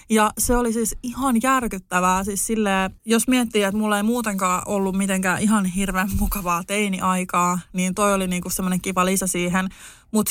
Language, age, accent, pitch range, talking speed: Finnish, 20-39, native, 190-235 Hz, 165 wpm